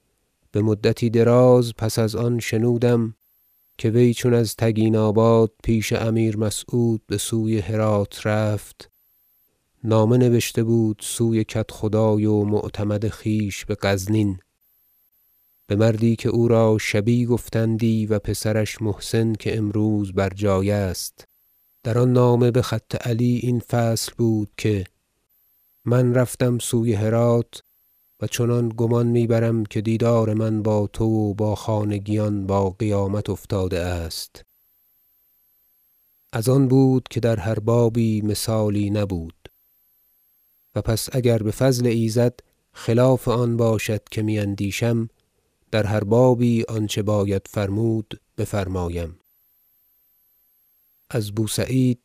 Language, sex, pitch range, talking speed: Persian, male, 105-115 Hz, 120 wpm